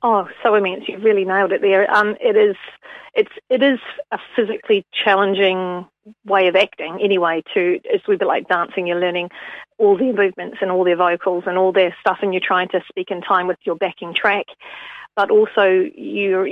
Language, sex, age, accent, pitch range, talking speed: English, female, 40-59, Australian, 180-215 Hz, 195 wpm